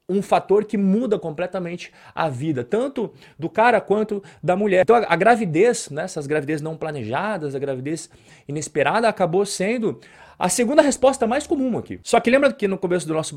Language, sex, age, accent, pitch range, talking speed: Portuguese, male, 30-49, Brazilian, 150-220 Hz, 180 wpm